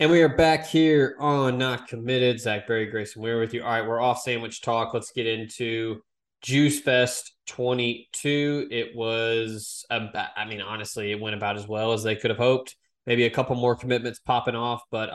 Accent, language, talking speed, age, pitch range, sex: American, English, 200 wpm, 20-39, 110-125 Hz, male